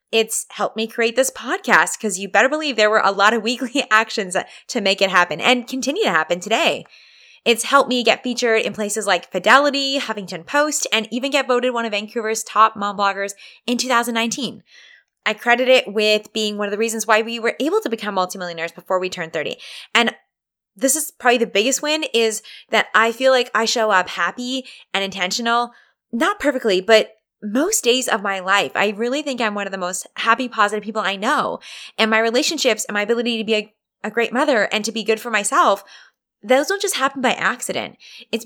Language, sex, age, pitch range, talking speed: English, female, 20-39, 205-260 Hz, 210 wpm